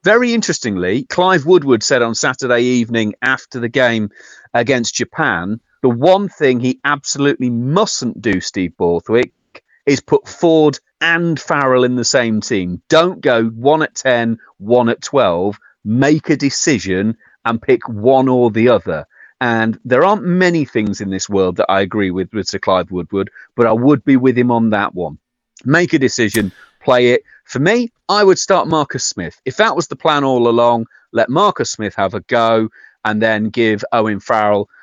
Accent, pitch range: British, 105-145 Hz